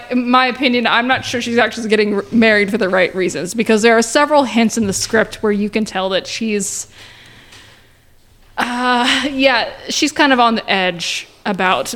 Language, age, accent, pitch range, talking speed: English, 20-39, American, 185-235 Hz, 185 wpm